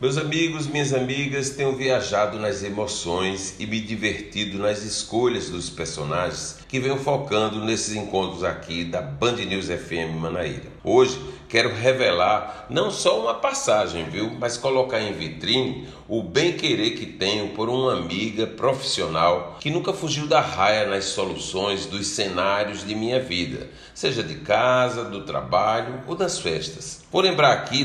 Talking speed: 150 wpm